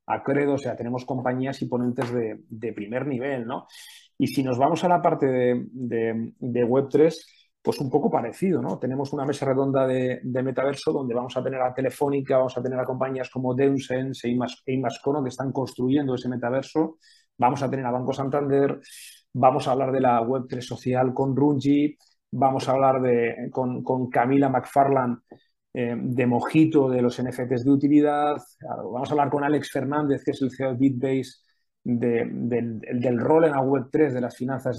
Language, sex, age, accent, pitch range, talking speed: Spanish, male, 30-49, Spanish, 125-140 Hz, 185 wpm